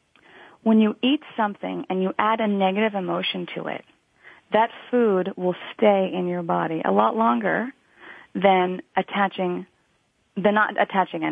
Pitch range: 185-230 Hz